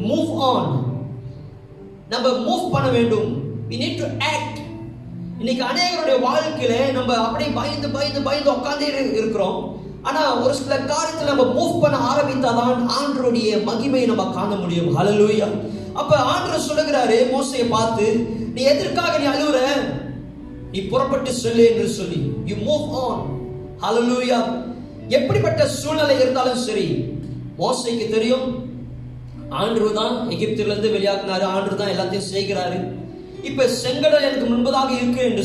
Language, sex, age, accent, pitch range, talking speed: Tamil, male, 20-39, native, 215-275 Hz, 100 wpm